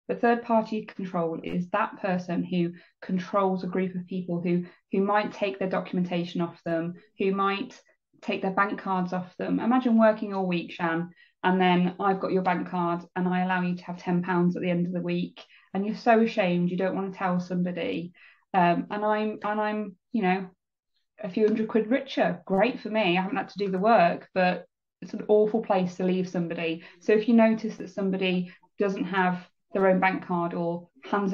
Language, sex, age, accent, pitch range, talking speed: English, female, 20-39, British, 180-205 Hz, 205 wpm